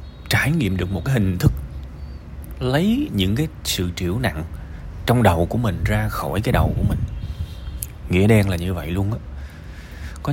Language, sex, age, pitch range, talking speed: Vietnamese, male, 20-39, 80-115 Hz, 180 wpm